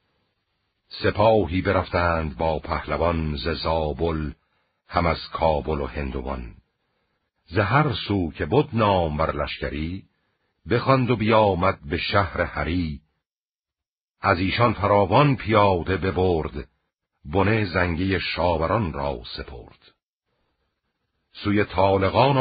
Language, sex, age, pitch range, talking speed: Persian, male, 60-79, 85-115 Hz, 95 wpm